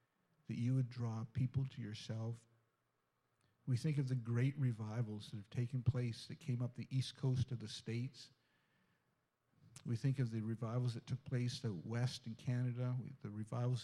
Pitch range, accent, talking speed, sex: 115-135 Hz, American, 180 wpm, male